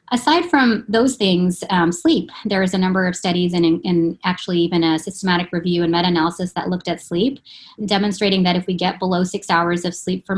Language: English